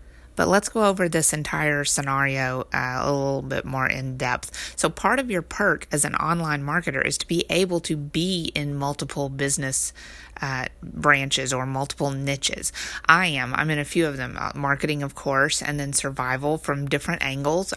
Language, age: English, 30-49